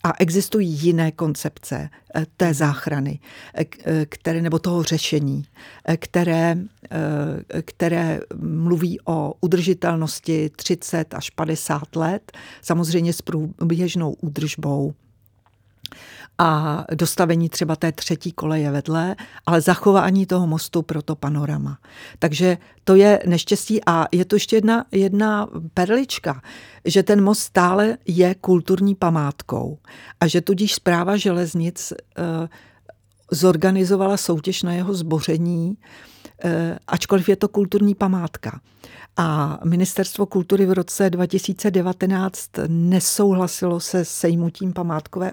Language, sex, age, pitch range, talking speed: Czech, female, 50-69, 155-185 Hz, 105 wpm